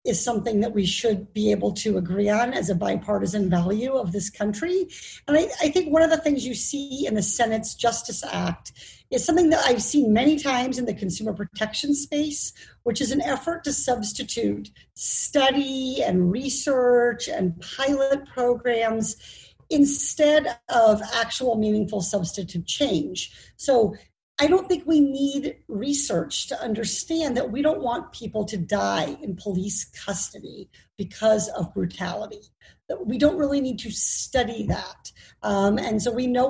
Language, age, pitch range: English, 50-69, 210-285 Hz